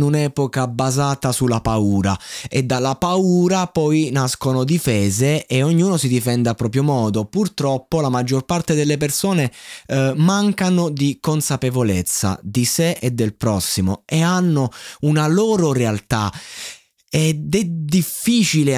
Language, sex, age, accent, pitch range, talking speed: Italian, male, 20-39, native, 115-155 Hz, 130 wpm